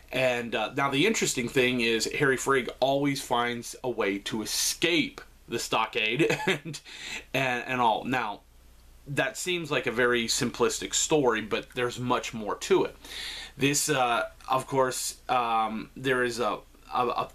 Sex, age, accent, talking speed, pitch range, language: male, 30-49, American, 155 wpm, 110-135 Hz, English